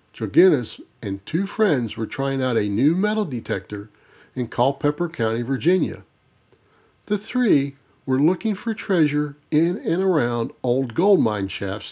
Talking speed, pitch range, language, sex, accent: 140 wpm, 110-175 Hz, English, male, American